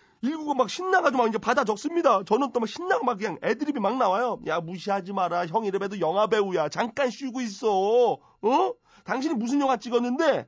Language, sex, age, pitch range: Korean, male, 30-49, 195-280 Hz